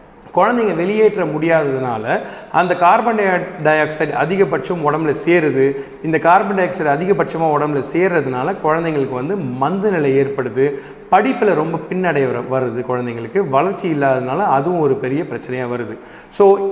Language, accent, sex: Tamil, native, male